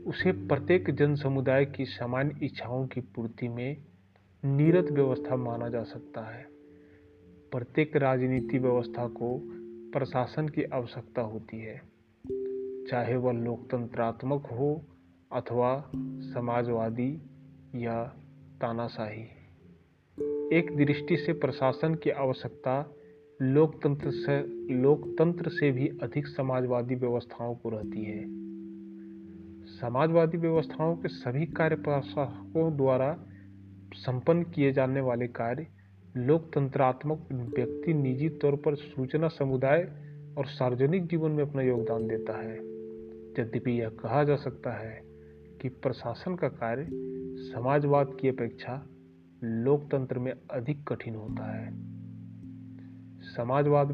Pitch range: 115-145 Hz